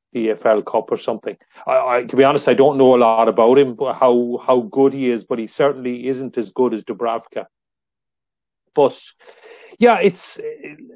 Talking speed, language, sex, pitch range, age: 185 wpm, English, male, 120-140 Hz, 30-49